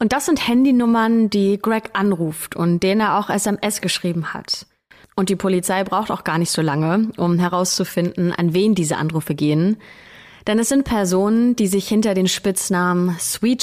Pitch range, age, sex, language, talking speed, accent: 180-210 Hz, 30-49, female, German, 175 wpm, German